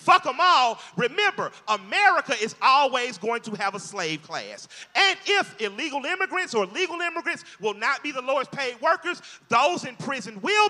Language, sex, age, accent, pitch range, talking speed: English, male, 40-59, American, 240-340 Hz, 175 wpm